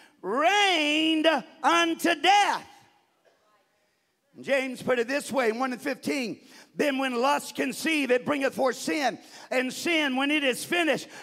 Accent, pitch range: American, 295-370 Hz